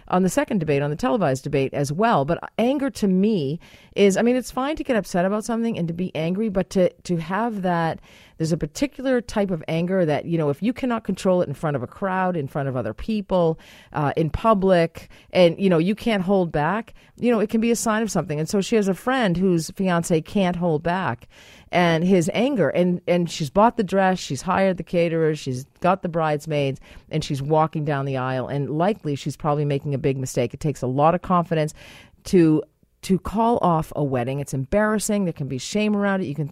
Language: English